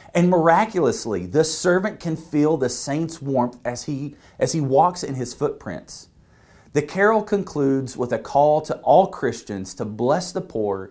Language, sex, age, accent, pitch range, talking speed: English, male, 40-59, American, 115-165 Hz, 165 wpm